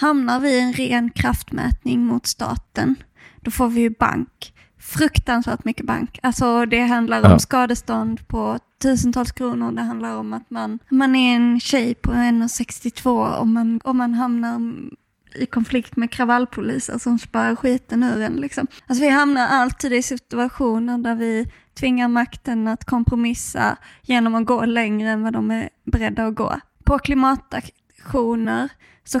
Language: Swedish